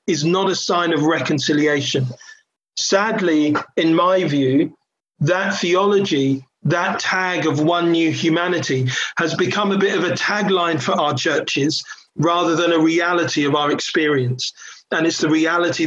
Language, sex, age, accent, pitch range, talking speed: English, male, 40-59, British, 160-195 Hz, 150 wpm